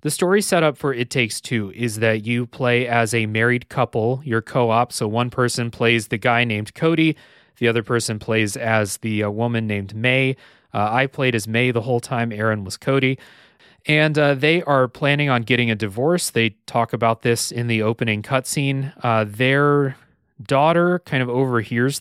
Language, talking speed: English, 190 wpm